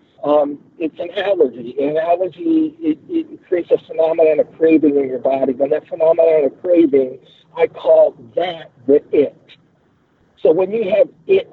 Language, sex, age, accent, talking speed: English, male, 50-69, American, 160 wpm